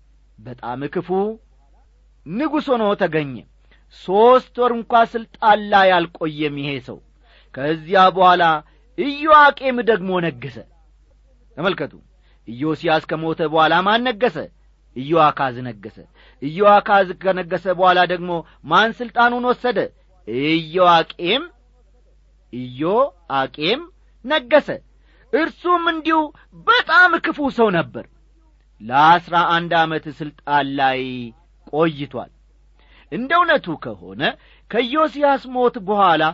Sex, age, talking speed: male, 40-59, 80 wpm